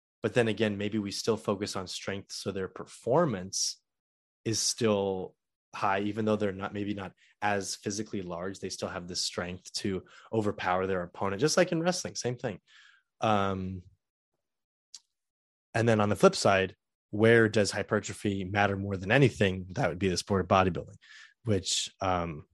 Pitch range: 95-105 Hz